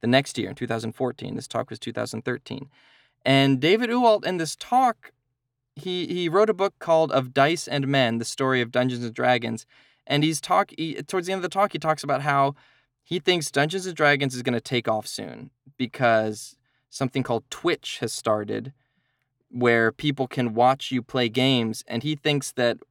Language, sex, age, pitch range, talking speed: English, male, 20-39, 125-150 Hz, 190 wpm